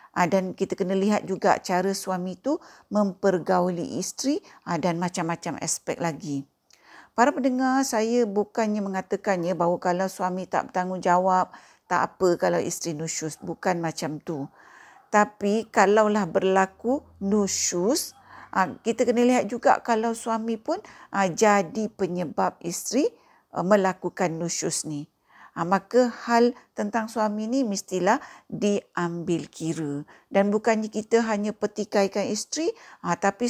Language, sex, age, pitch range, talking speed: Malay, female, 50-69, 185-235 Hz, 120 wpm